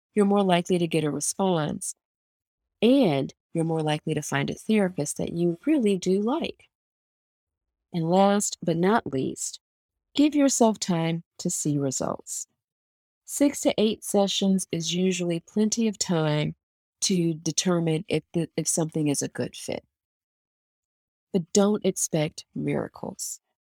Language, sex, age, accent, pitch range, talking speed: English, female, 40-59, American, 150-195 Hz, 135 wpm